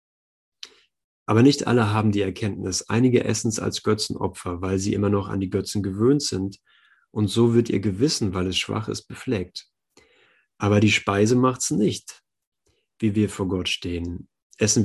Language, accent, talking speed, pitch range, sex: German, German, 165 wpm, 100-120 Hz, male